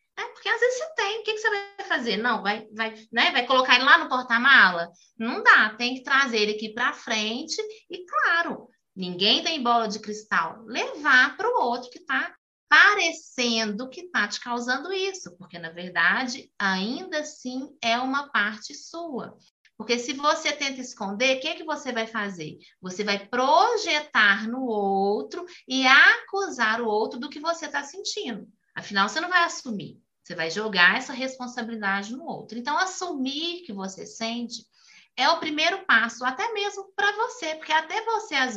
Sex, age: female, 20-39